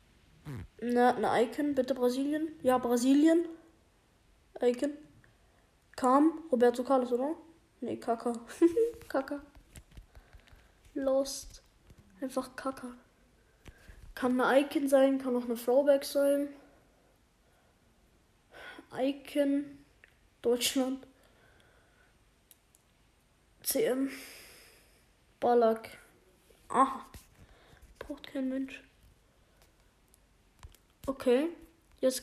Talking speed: 70 wpm